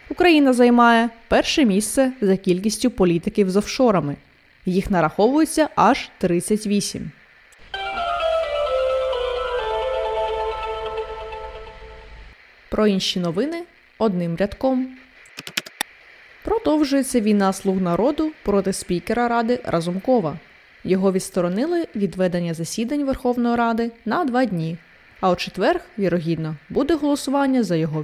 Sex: female